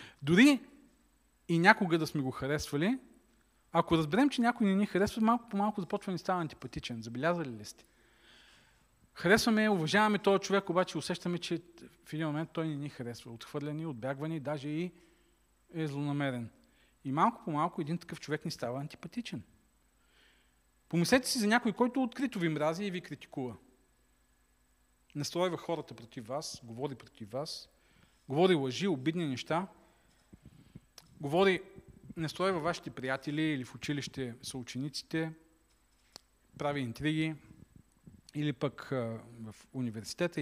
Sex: male